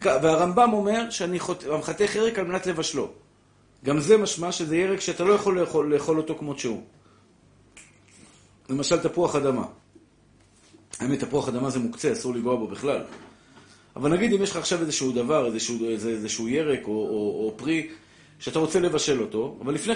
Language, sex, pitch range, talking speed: Hebrew, male, 130-190 Hz, 165 wpm